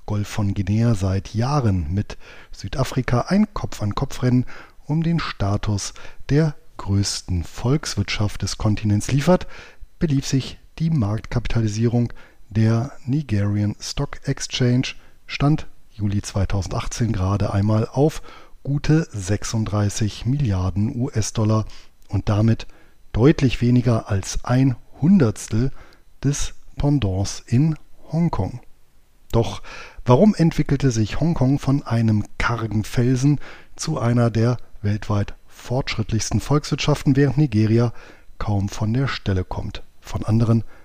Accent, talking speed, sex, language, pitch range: German, 105 wpm, male, German, 100-130 Hz